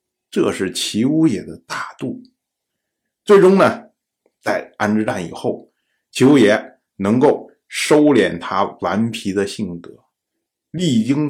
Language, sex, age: Chinese, male, 50-69